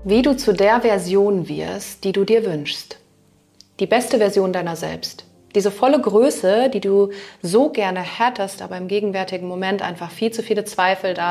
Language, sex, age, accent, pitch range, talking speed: German, female, 30-49, German, 180-215 Hz, 175 wpm